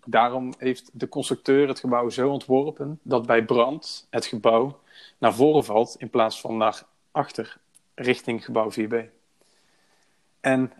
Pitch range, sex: 120-140 Hz, male